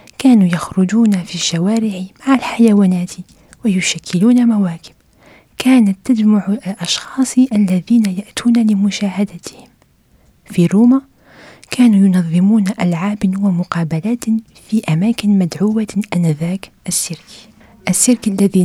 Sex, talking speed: female, 85 wpm